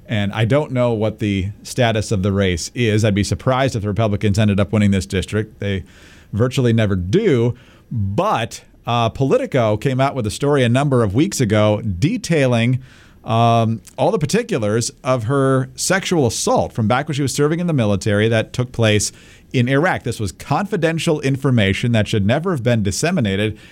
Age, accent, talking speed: 40-59, American, 180 wpm